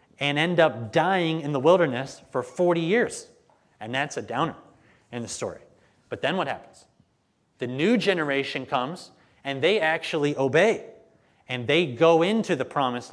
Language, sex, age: English, male, 30-49